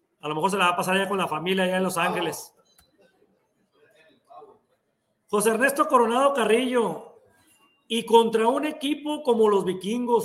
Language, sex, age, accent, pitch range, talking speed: Spanish, male, 40-59, Mexican, 175-250 Hz, 160 wpm